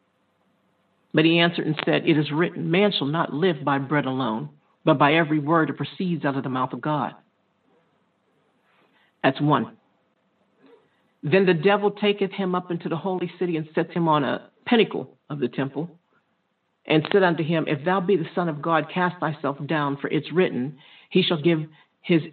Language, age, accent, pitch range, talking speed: English, 50-69, American, 145-180 Hz, 185 wpm